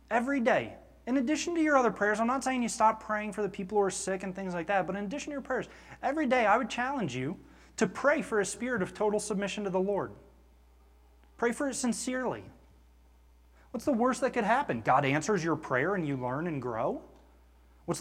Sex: male